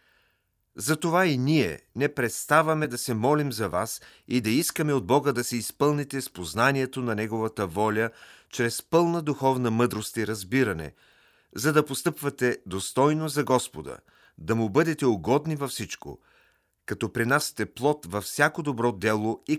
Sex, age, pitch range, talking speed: male, 40-59, 105-140 Hz, 150 wpm